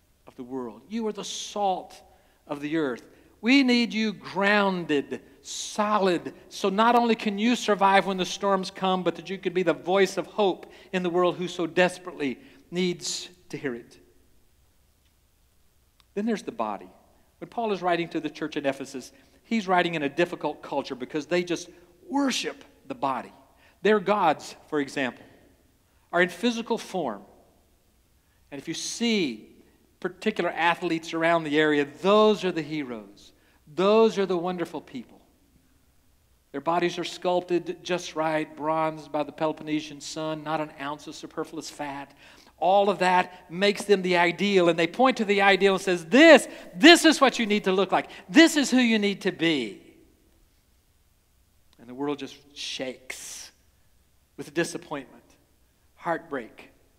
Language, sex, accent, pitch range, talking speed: English, male, American, 145-200 Hz, 160 wpm